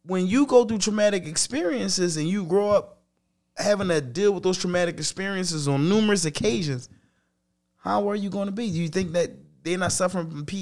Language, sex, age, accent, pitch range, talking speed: English, male, 20-39, American, 145-190 Hz, 190 wpm